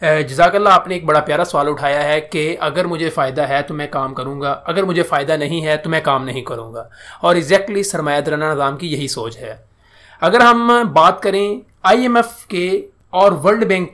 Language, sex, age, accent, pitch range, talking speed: English, male, 30-49, Indian, 150-205 Hz, 195 wpm